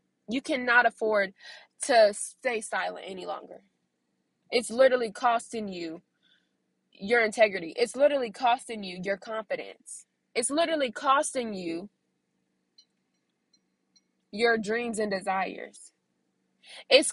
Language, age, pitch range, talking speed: English, 20-39, 220-285 Hz, 100 wpm